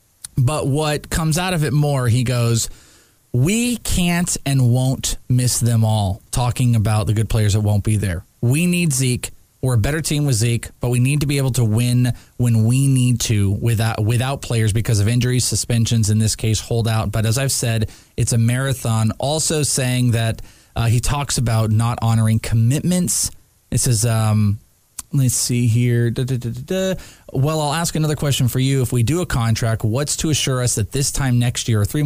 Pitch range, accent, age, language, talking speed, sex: 110-130 Hz, American, 20-39, English, 195 wpm, male